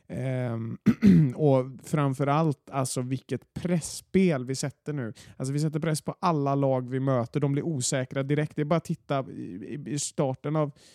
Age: 30-49